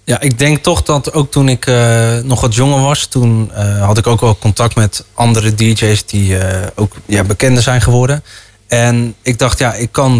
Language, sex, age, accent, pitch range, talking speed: Dutch, male, 20-39, Dutch, 105-125 Hz, 210 wpm